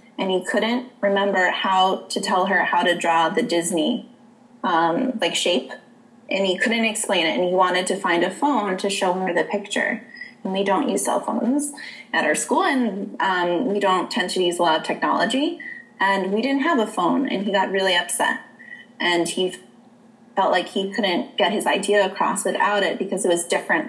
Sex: female